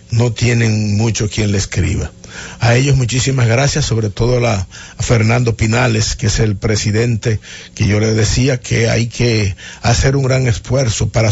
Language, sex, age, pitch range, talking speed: English, male, 50-69, 105-120 Hz, 165 wpm